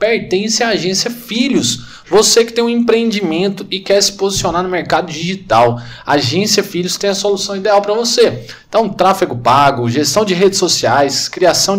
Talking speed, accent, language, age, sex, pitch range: 170 wpm, Brazilian, Portuguese, 20-39, male, 160-210 Hz